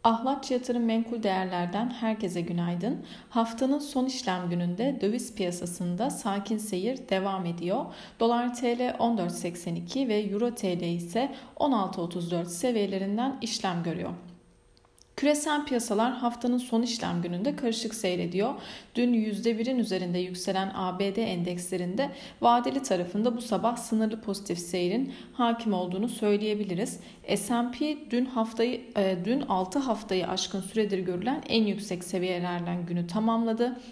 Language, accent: Turkish, native